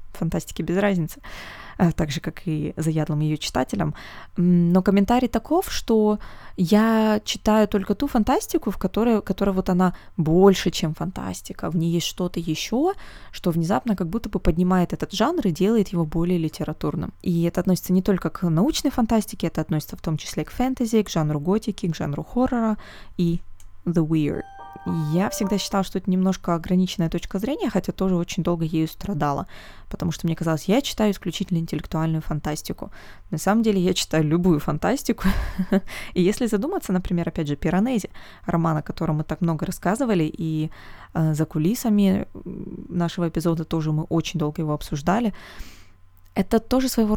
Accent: native